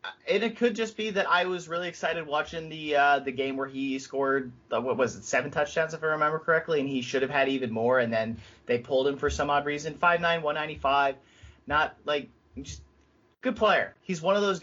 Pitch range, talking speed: 120-150 Hz, 220 wpm